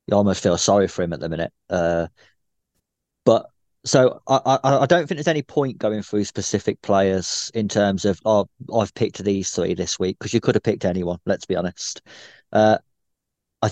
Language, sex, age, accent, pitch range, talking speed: English, male, 20-39, British, 95-115 Hz, 195 wpm